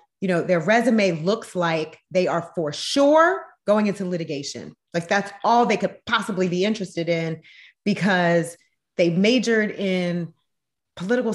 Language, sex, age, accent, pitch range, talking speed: English, female, 30-49, American, 170-205 Hz, 145 wpm